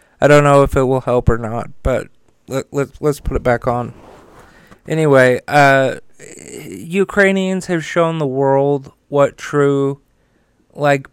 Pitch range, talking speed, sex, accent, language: 135-155 Hz, 145 wpm, male, American, English